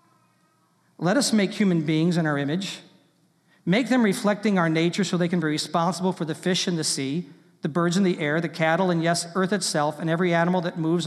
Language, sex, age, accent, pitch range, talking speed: English, male, 50-69, American, 170-220 Hz, 215 wpm